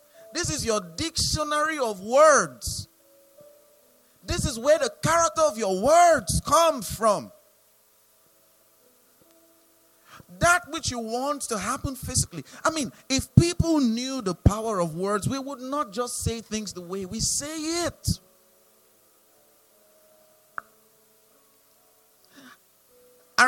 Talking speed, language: 110 wpm, English